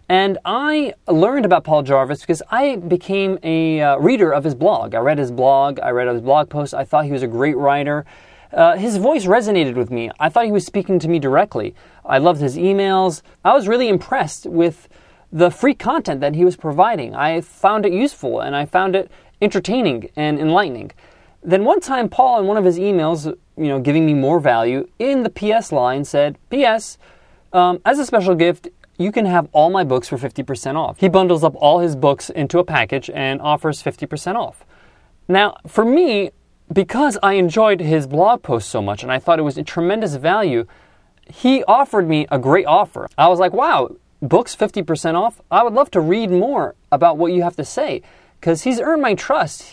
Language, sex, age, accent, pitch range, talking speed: English, male, 30-49, American, 140-200 Hz, 210 wpm